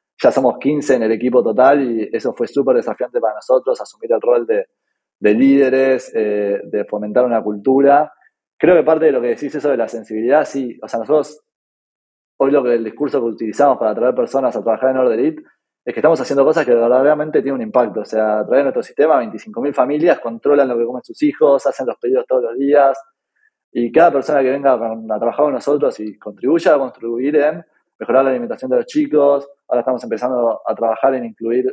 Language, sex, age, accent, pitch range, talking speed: Spanish, male, 20-39, Argentinian, 120-160 Hz, 215 wpm